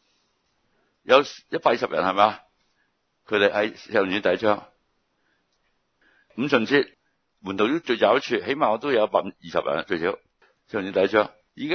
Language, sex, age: Chinese, male, 60-79